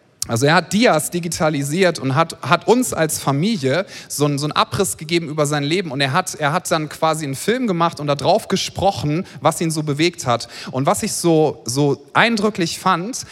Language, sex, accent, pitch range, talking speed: German, male, German, 140-185 Hz, 205 wpm